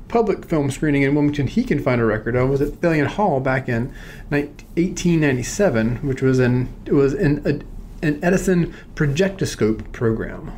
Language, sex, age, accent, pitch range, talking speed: English, male, 30-49, American, 135-160 Hz, 160 wpm